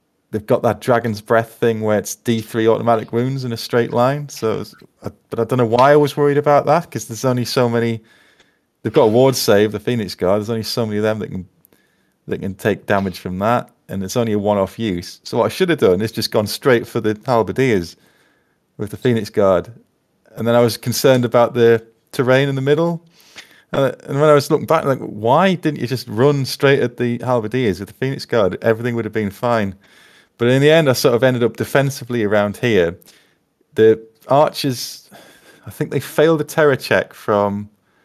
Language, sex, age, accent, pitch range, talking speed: English, male, 30-49, British, 110-130 Hz, 220 wpm